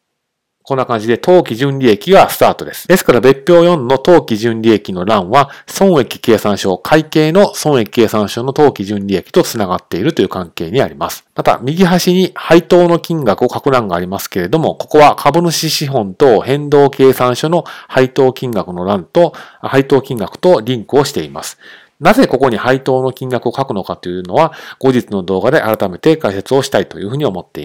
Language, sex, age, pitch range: Japanese, male, 40-59, 115-160 Hz